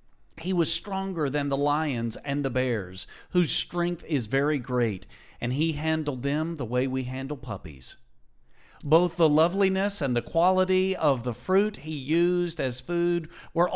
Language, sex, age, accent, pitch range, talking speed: English, male, 50-69, American, 135-180 Hz, 160 wpm